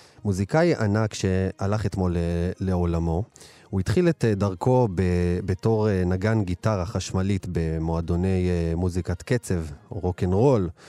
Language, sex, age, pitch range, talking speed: Hebrew, male, 30-49, 85-105 Hz, 95 wpm